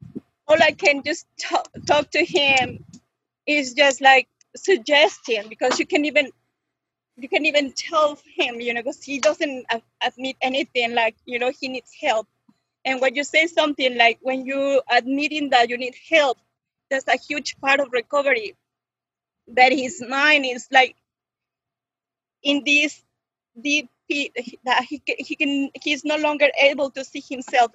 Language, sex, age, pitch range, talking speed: English, female, 30-49, 255-310 Hz, 160 wpm